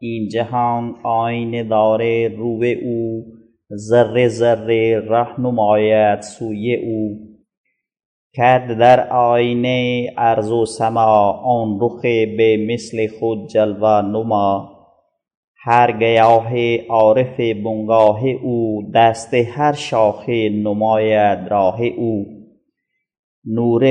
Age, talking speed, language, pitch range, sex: 30-49, 90 wpm, English, 110-120 Hz, male